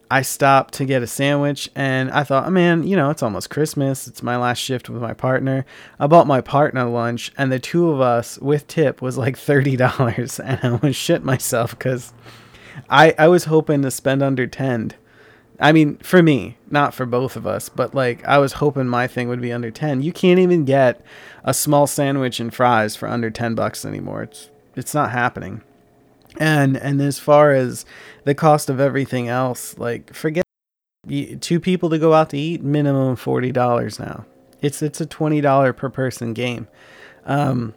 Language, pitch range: English, 125-145 Hz